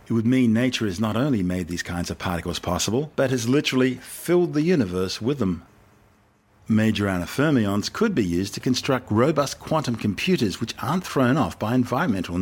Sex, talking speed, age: male, 180 wpm, 50-69